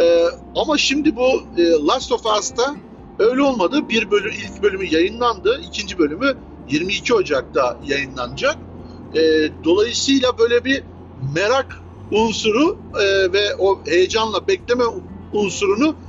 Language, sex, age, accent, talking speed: Turkish, male, 60-79, native, 105 wpm